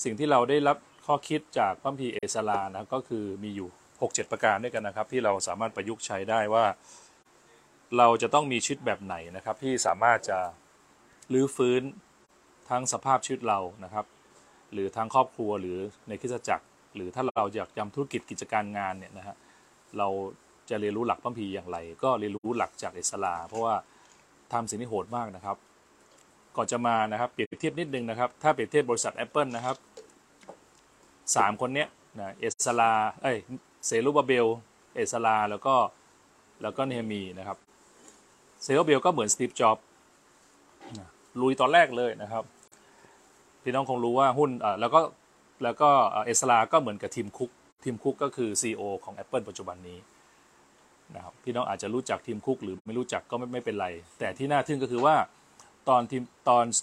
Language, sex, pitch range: Thai, male, 100-130 Hz